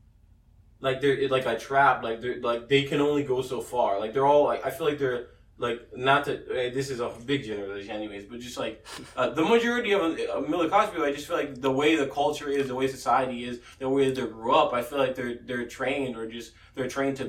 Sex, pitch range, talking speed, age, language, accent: male, 120-140 Hz, 245 wpm, 20-39, English, American